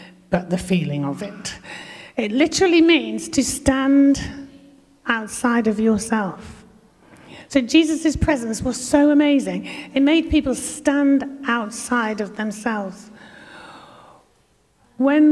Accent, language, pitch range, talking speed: British, English, 185-275 Hz, 105 wpm